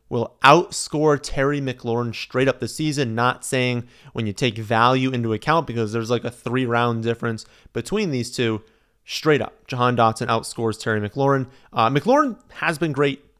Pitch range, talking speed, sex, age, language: 115-150 Hz, 170 wpm, male, 30-49, English